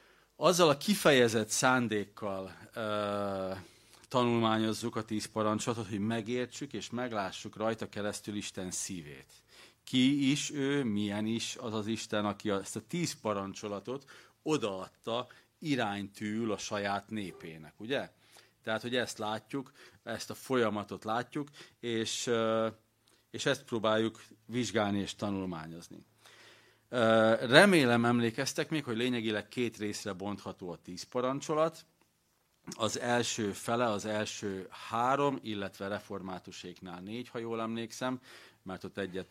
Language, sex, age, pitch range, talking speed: Hungarian, male, 40-59, 100-120 Hz, 120 wpm